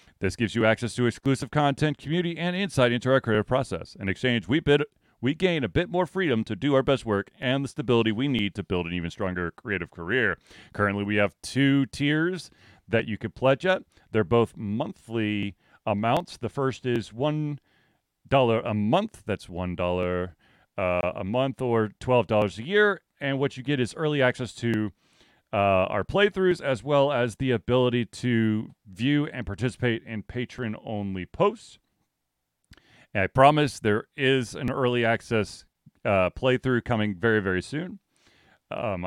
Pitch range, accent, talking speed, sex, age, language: 100-135 Hz, American, 165 wpm, male, 30-49, English